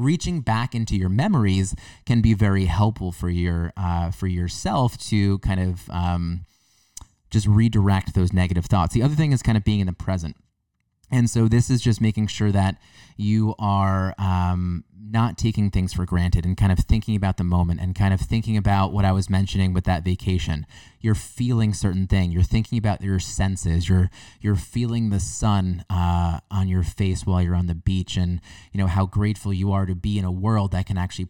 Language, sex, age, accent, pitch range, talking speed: English, male, 20-39, American, 95-115 Hz, 205 wpm